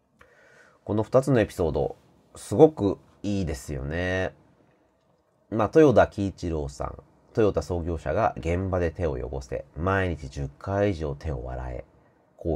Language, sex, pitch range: Japanese, male, 75-110 Hz